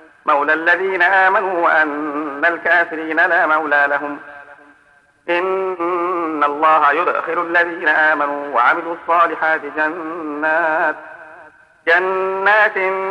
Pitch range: 160-190 Hz